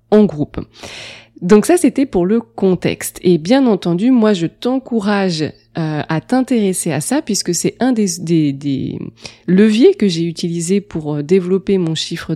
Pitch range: 170-215 Hz